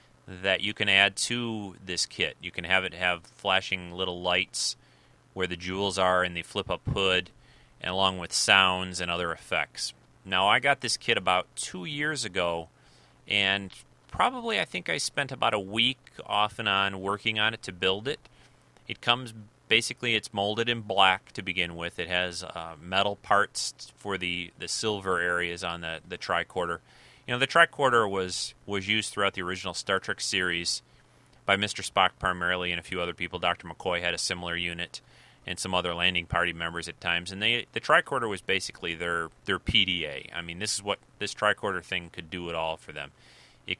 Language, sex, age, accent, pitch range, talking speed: English, male, 30-49, American, 85-100 Hz, 195 wpm